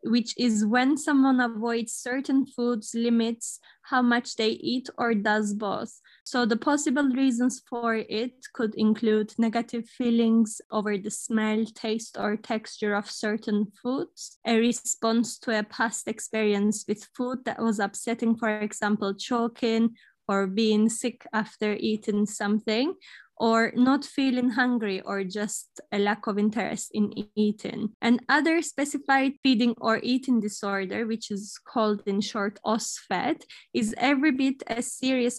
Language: English